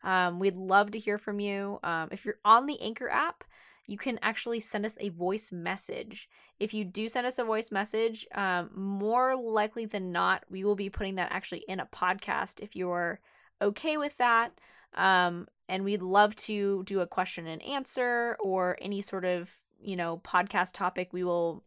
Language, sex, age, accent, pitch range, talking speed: English, female, 10-29, American, 180-215 Hz, 190 wpm